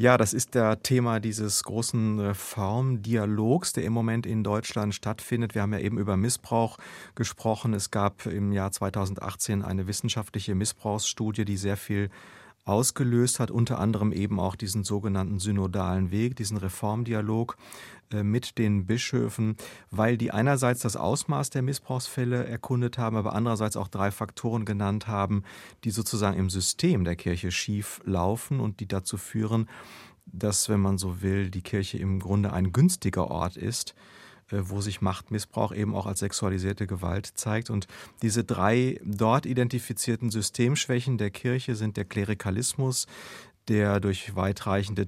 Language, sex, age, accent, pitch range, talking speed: German, male, 30-49, German, 100-115 Hz, 150 wpm